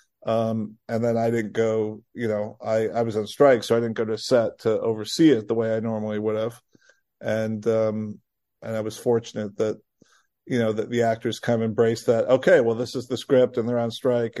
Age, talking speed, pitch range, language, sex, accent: 50-69, 225 wpm, 115-150 Hz, English, male, American